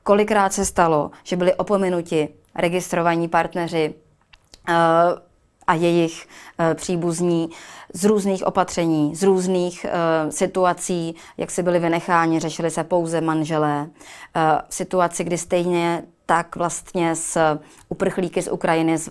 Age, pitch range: 20-39, 160-180 Hz